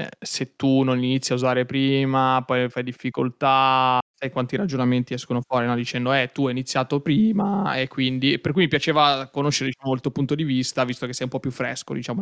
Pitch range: 125-145 Hz